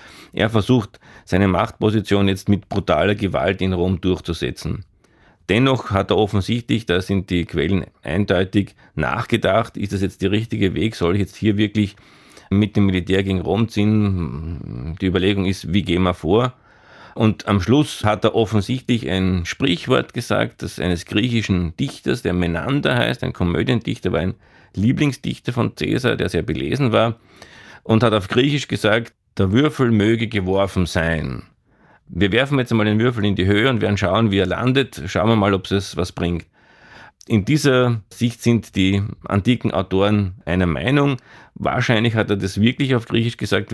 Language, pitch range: German, 95-115 Hz